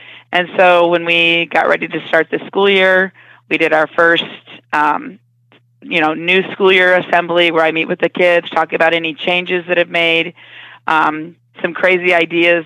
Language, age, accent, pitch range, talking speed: English, 40-59, American, 160-180 Hz, 185 wpm